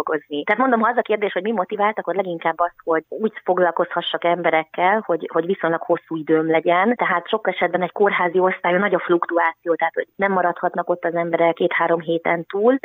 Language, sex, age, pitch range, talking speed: Hungarian, female, 30-49, 165-185 Hz, 195 wpm